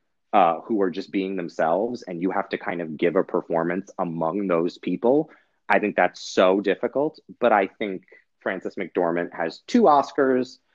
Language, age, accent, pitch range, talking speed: English, 30-49, American, 90-120 Hz, 175 wpm